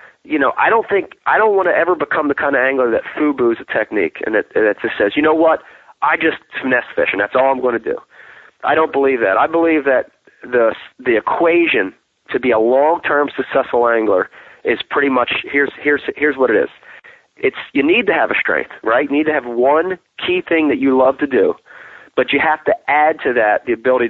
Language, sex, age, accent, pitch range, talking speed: English, male, 30-49, American, 120-155 Hz, 230 wpm